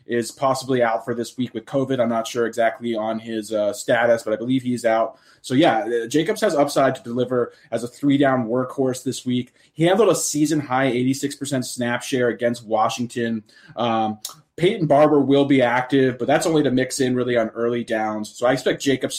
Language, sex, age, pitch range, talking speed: English, male, 20-39, 115-135 Hz, 195 wpm